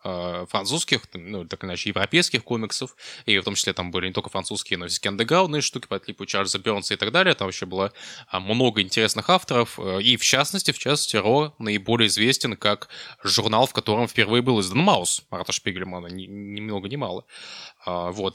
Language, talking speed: Russian, 185 wpm